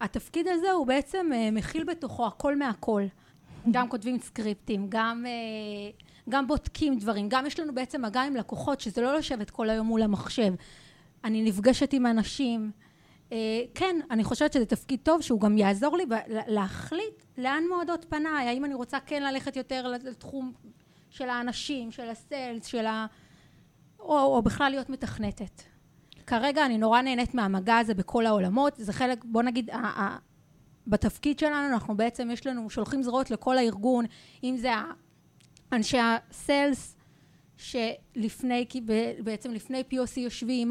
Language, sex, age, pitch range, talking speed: Hebrew, female, 20-39, 220-275 Hz, 145 wpm